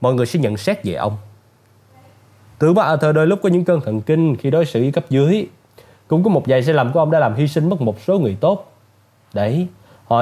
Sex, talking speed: male, 245 wpm